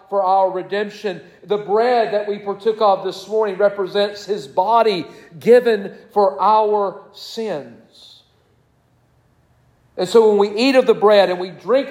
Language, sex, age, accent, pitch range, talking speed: English, male, 50-69, American, 165-210 Hz, 145 wpm